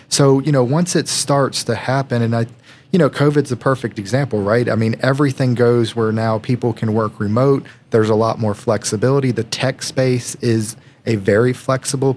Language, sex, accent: English, male, American